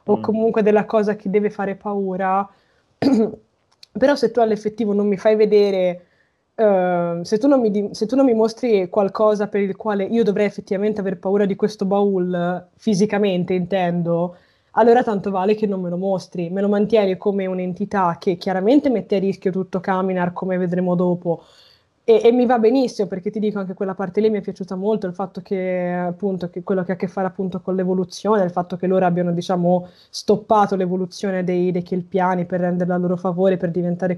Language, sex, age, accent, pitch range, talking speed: Italian, female, 20-39, native, 185-215 Hz, 195 wpm